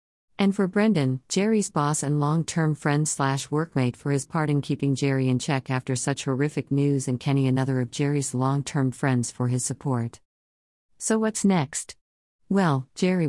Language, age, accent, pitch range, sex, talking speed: English, 50-69, American, 125-145 Hz, female, 165 wpm